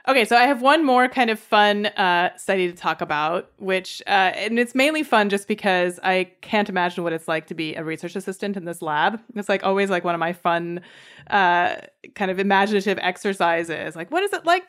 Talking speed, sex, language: 220 wpm, female, English